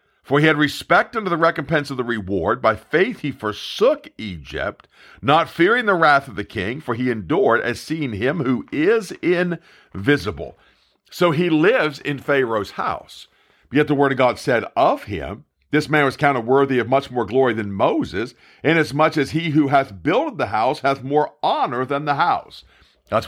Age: 50-69